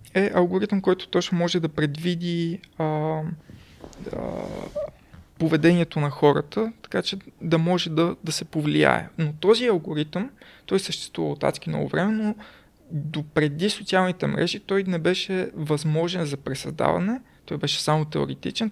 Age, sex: 20-39, male